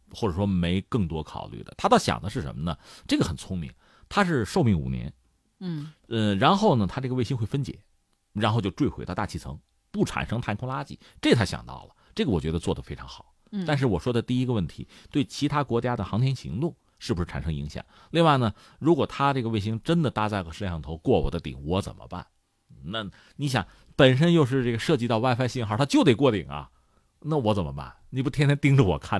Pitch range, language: 85-135 Hz, Chinese